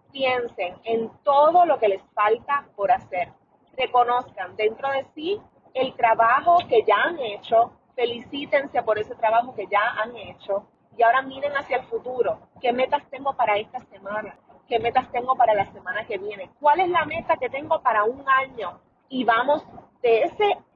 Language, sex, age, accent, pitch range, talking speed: Spanish, female, 30-49, American, 230-300 Hz, 175 wpm